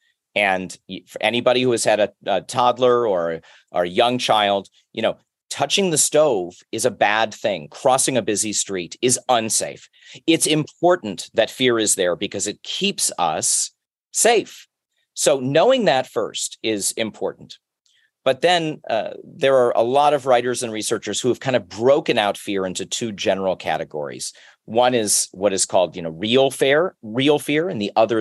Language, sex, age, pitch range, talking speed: English, male, 40-59, 95-135 Hz, 175 wpm